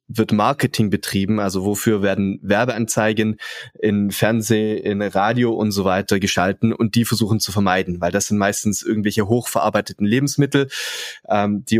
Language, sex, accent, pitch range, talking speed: German, male, German, 105-125 Hz, 145 wpm